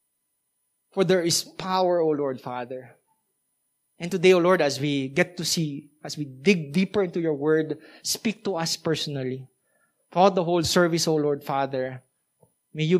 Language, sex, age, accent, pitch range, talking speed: English, male, 20-39, Filipino, 150-205 Hz, 165 wpm